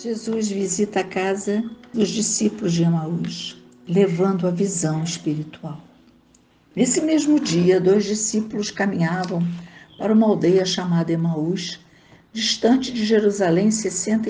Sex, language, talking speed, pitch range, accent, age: female, Portuguese, 115 wpm, 185-240 Hz, Brazilian, 60-79